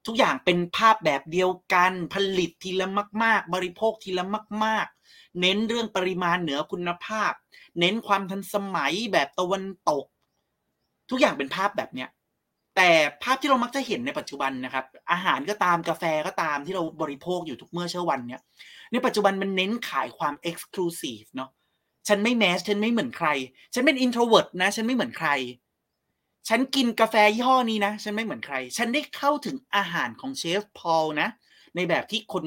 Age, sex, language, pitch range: 30-49, male, Thai, 155-215 Hz